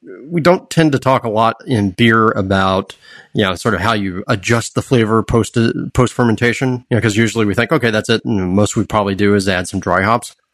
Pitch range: 100-130 Hz